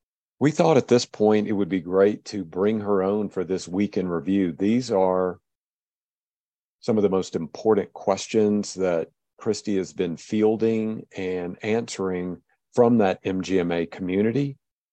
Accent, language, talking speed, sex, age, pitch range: American, English, 145 wpm, male, 50-69, 95-105 Hz